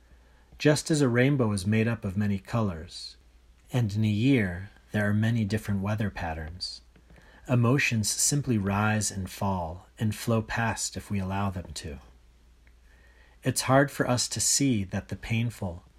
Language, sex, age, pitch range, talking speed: English, male, 40-59, 75-115 Hz, 160 wpm